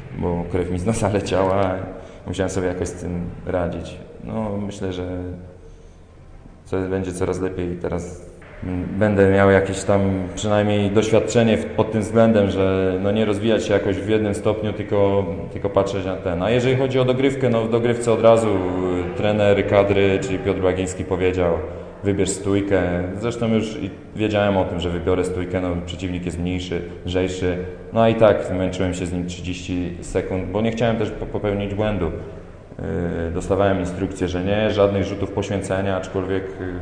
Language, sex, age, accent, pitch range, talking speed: Polish, male, 20-39, native, 90-100 Hz, 160 wpm